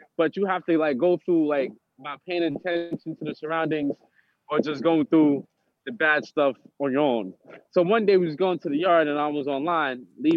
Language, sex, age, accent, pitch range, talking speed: English, male, 20-39, American, 150-185 Hz, 220 wpm